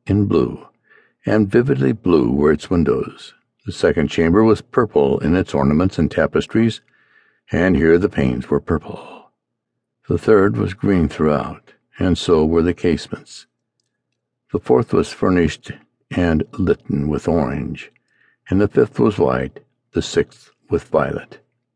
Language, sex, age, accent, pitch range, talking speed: English, male, 60-79, American, 80-115 Hz, 140 wpm